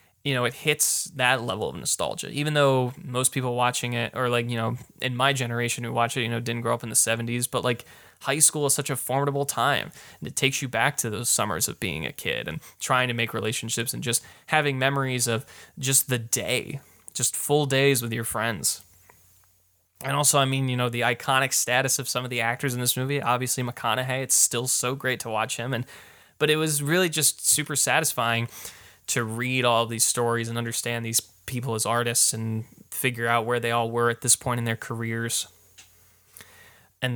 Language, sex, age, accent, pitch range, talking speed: English, male, 20-39, American, 115-135 Hz, 210 wpm